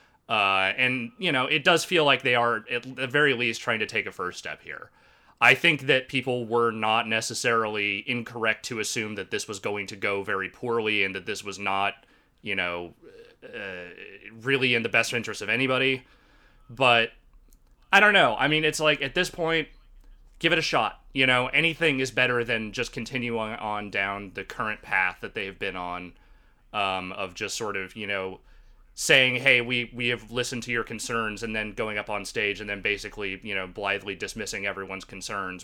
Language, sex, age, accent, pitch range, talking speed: English, male, 30-49, American, 100-125 Hz, 195 wpm